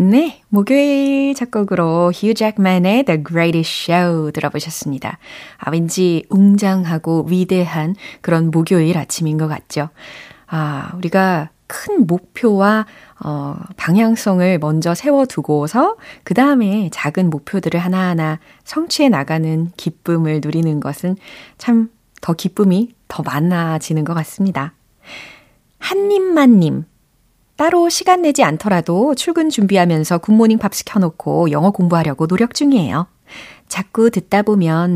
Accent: native